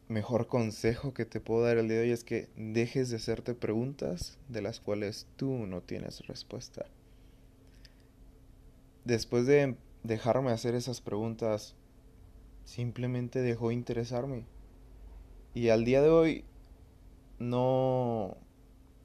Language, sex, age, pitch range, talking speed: Spanish, male, 20-39, 100-120 Hz, 120 wpm